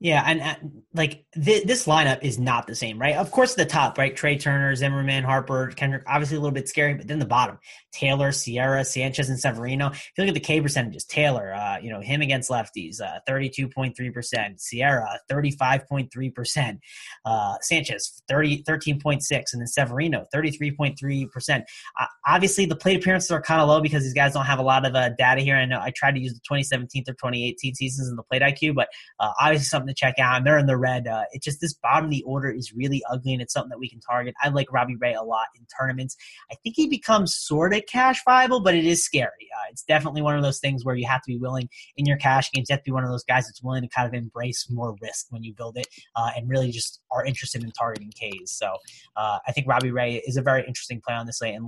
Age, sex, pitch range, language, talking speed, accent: 20-39, male, 125-150 Hz, English, 240 wpm, American